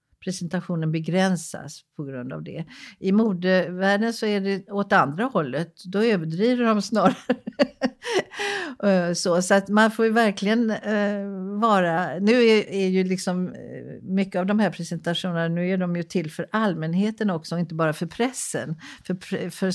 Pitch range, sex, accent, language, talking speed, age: 155-200 Hz, female, Swedish, English, 155 wpm, 50-69